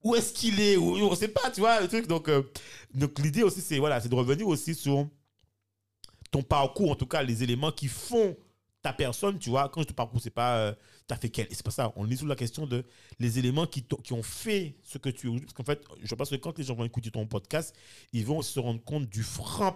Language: French